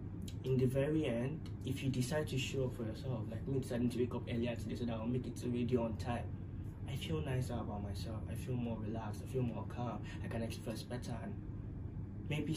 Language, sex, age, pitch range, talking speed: English, male, 20-39, 100-125 Hz, 230 wpm